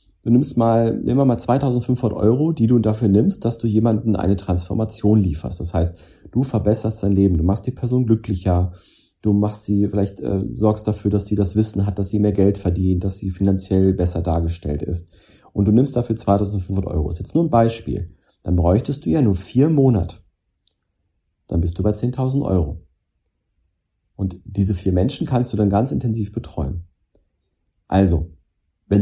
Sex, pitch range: male, 90-115 Hz